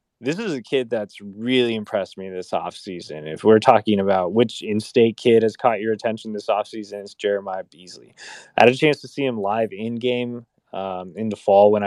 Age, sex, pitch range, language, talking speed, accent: 20-39, male, 100-115 Hz, English, 205 wpm, American